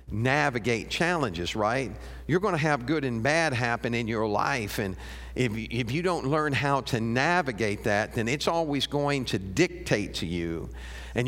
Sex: male